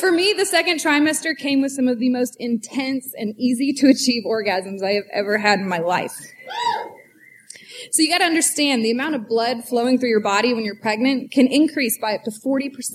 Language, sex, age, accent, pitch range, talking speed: English, female, 20-39, American, 230-320 Hz, 195 wpm